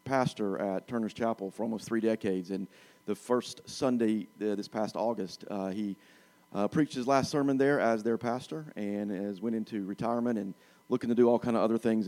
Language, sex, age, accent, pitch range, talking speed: English, male, 40-59, American, 100-115 Hz, 200 wpm